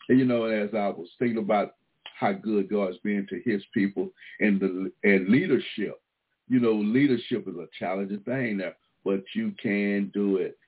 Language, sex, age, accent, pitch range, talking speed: English, male, 60-79, American, 95-110 Hz, 180 wpm